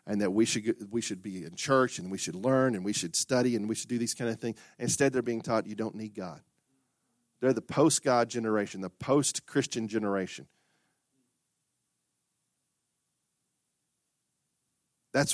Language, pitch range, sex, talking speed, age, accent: English, 105-135 Hz, male, 170 wpm, 40-59, American